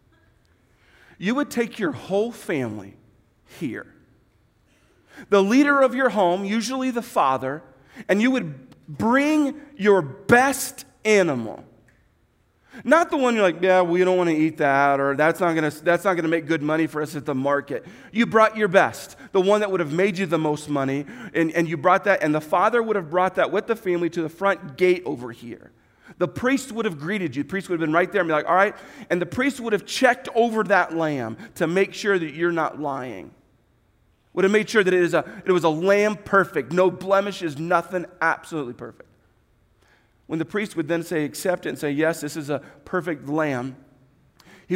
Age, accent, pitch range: 40-59, American, 155-200 Hz